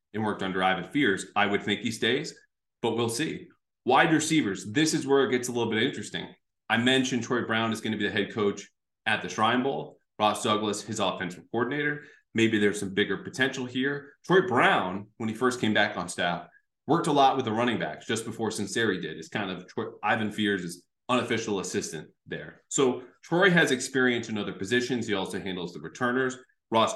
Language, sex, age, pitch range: English, male, 30-49, 100-130 Hz